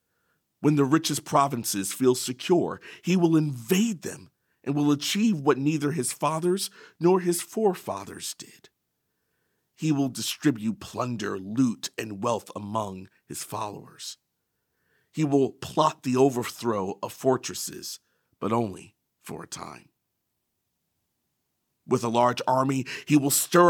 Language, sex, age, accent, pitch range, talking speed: English, male, 50-69, American, 110-150 Hz, 125 wpm